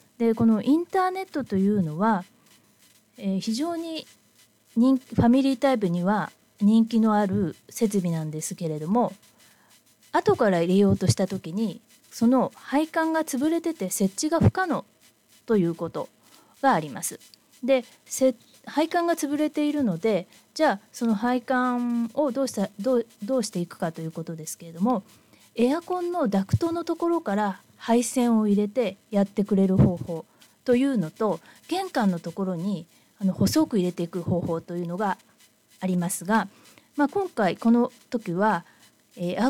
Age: 20-39